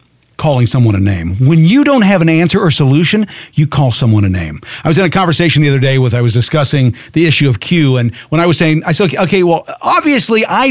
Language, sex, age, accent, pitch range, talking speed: English, male, 50-69, American, 120-170 Hz, 245 wpm